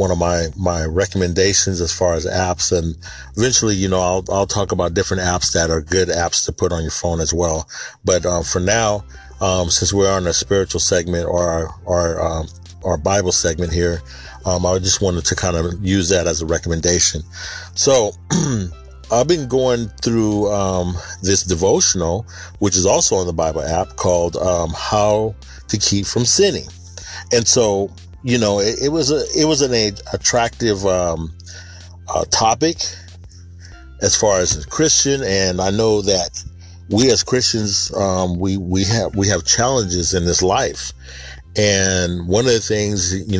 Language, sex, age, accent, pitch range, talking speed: English, male, 40-59, American, 85-100 Hz, 175 wpm